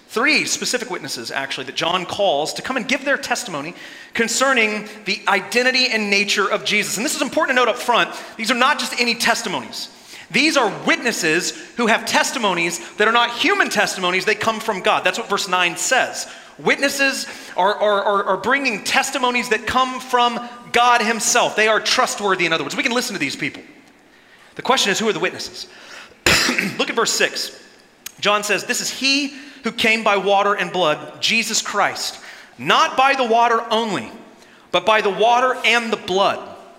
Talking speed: 185 wpm